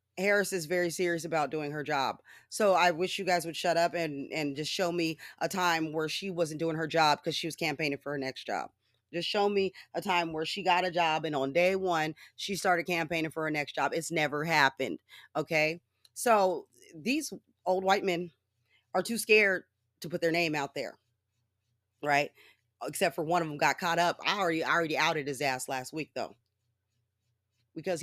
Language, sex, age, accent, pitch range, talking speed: English, female, 30-49, American, 145-195 Hz, 205 wpm